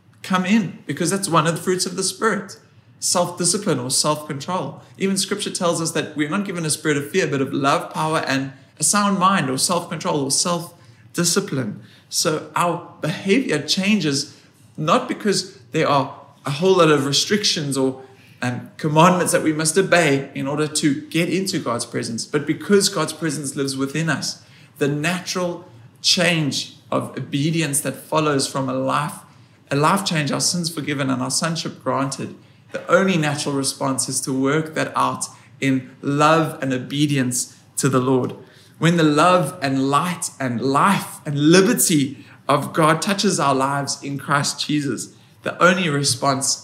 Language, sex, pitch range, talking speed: English, male, 135-175 Hz, 165 wpm